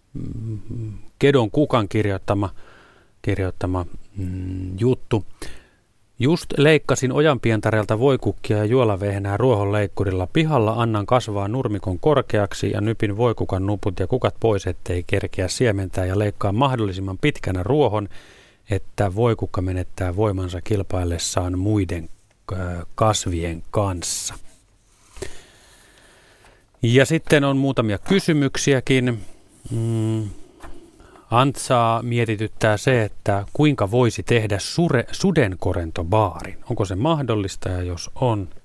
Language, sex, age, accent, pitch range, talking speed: Finnish, male, 30-49, native, 95-115 Hz, 100 wpm